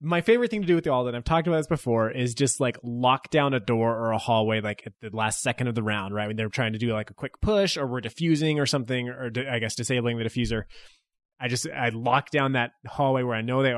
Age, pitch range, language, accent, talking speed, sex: 20-39, 115-140 Hz, English, American, 280 wpm, male